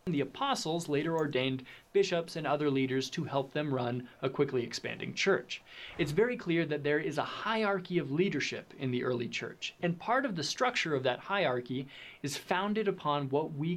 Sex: male